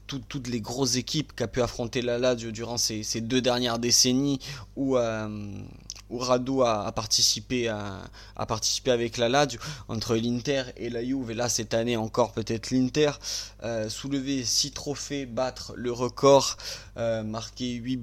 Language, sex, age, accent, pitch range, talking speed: French, male, 20-39, French, 110-130 Hz, 160 wpm